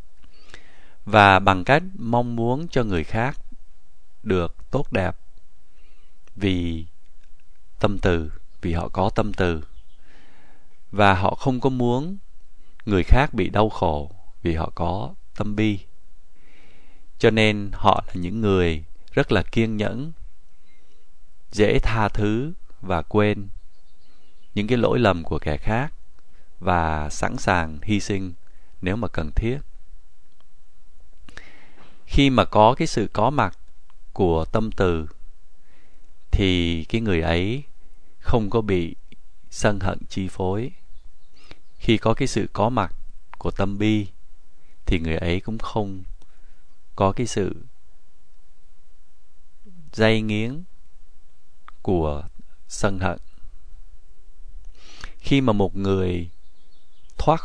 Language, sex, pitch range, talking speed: Vietnamese, male, 80-110 Hz, 120 wpm